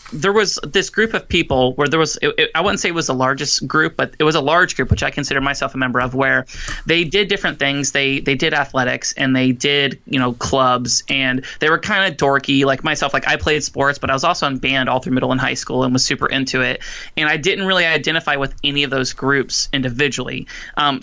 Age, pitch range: 20-39, 130-155 Hz